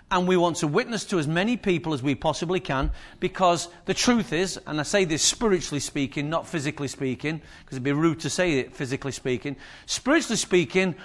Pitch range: 155-200 Hz